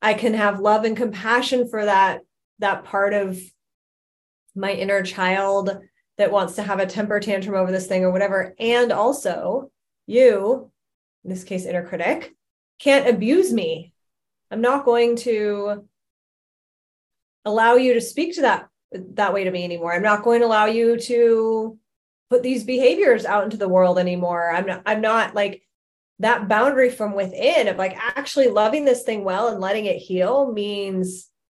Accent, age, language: American, 20-39, English